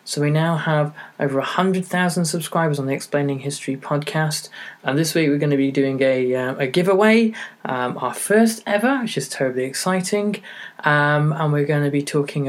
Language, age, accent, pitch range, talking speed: English, 20-39, British, 130-165 Hz, 185 wpm